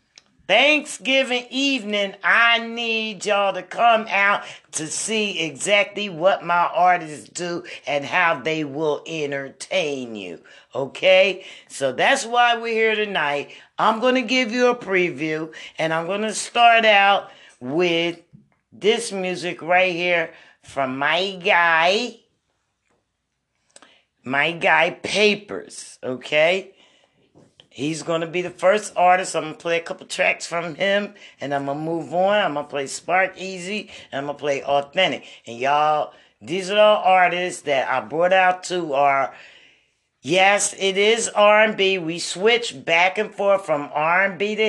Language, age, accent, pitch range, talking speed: English, 50-69, American, 150-200 Hz, 150 wpm